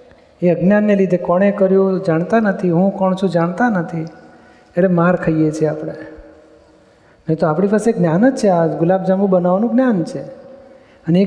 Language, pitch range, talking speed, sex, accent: Gujarati, 170-210 Hz, 165 wpm, male, native